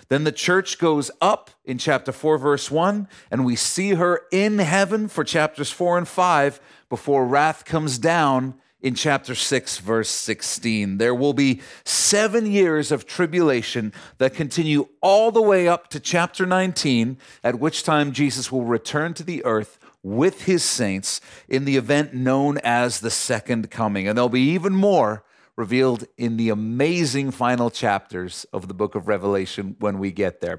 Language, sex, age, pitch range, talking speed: English, male, 40-59, 120-170 Hz, 170 wpm